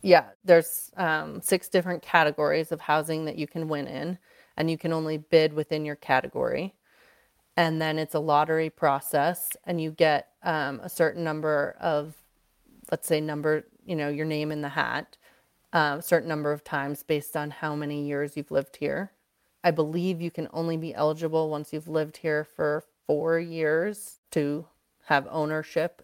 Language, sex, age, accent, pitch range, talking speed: English, female, 30-49, American, 150-170 Hz, 175 wpm